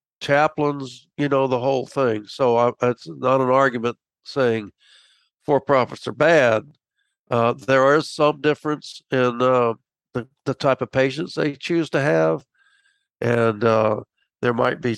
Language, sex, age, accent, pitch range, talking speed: English, male, 60-79, American, 120-155 Hz, 150 wpm